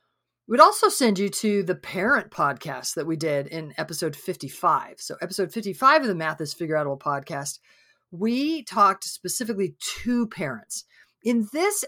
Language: English